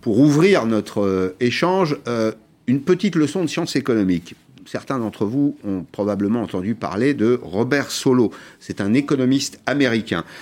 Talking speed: 150 wpm